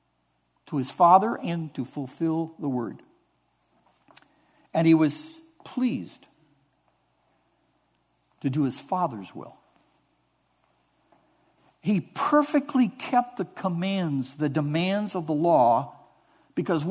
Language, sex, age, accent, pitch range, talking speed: English, male, 60-79, American, 130-180 Hz, 100 wpm